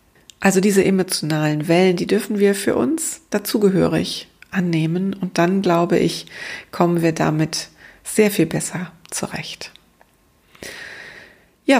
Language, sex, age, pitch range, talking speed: German, female, 40-59, 180-215 Hz, 115 wpm